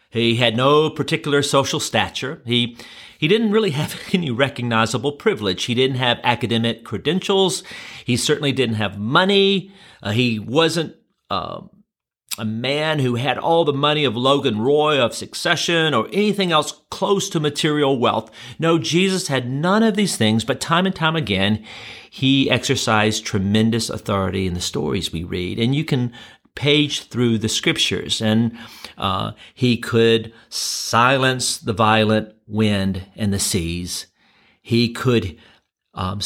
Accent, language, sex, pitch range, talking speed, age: American, English, male, 105-150 Hz, 145 wpm, 40-59